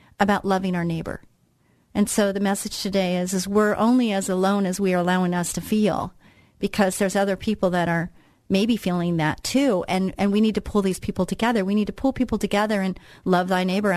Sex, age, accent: female, 40-59, American